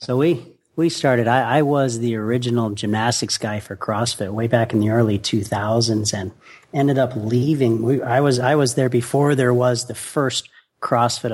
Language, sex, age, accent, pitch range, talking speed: English, male, 40-59, American, 115-135 Hz, 190 wpm